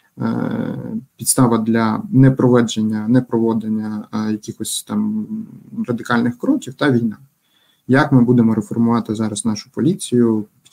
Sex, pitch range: male, 115-130 Hz